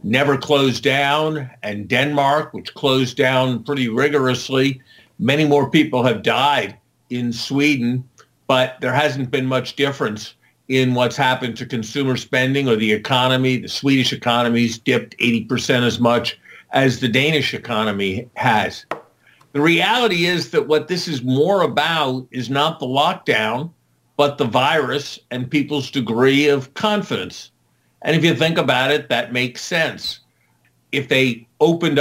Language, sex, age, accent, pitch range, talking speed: English, male, 50-69, American, 120-145 Hz, 145 wpm